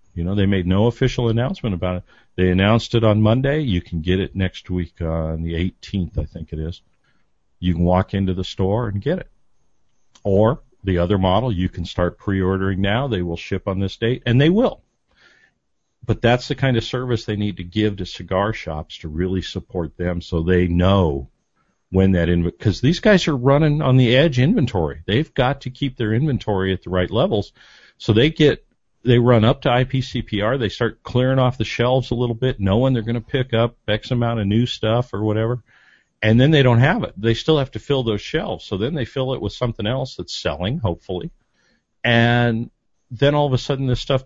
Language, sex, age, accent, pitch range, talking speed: English, male, 50-69, American, 95-125 Hz, 215 wpm